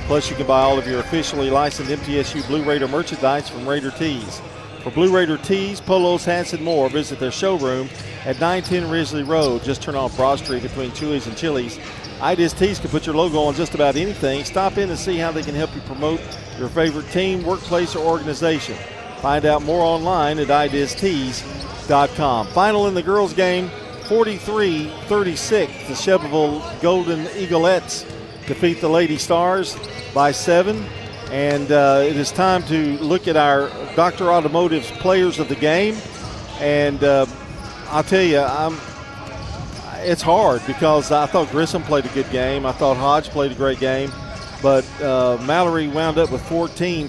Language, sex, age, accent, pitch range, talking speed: English, male, 50-69, American, 135-165 Hz, 165 wpm